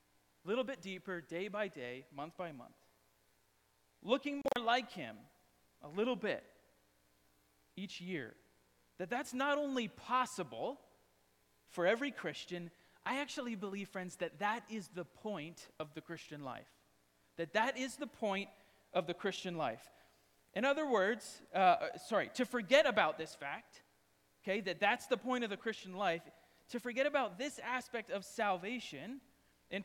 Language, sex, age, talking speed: English, male, 30-49, 150 wpm